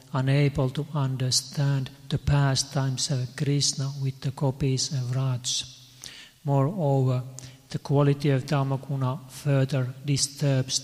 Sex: male